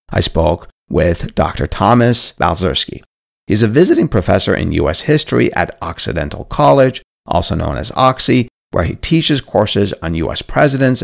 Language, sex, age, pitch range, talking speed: English, male, 50-69, 90-135 Hz, 145 wpm